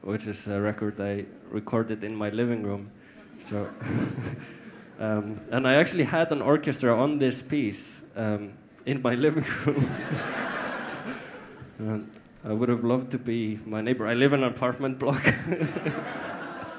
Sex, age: male, 20-39